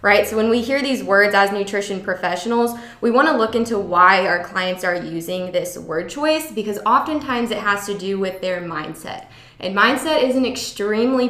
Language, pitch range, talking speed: English, 185-225 Hz, 195 wpm